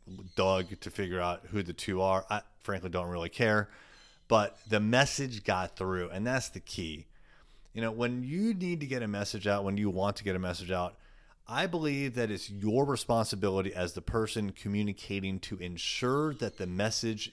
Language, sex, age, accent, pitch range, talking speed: English, male, 30-49, American, 95-120 Hz, 190 wpm